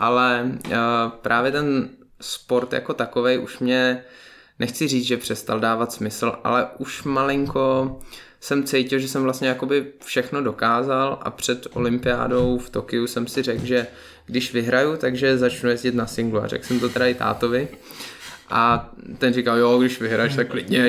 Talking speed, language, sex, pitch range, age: 160 wpm, Czech, male, 120-145 Hz, 20-39